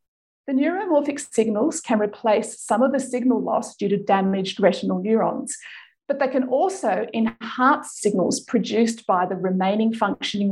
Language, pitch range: English, 210-270 Hz